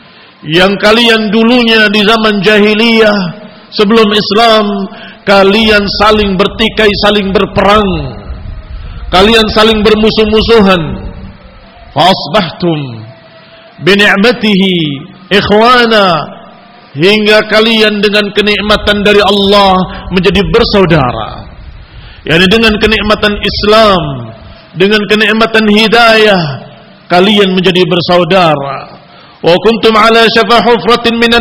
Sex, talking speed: male, 75 wpm